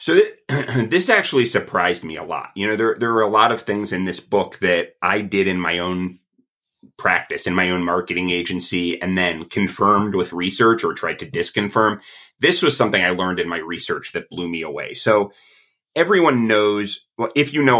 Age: 30-49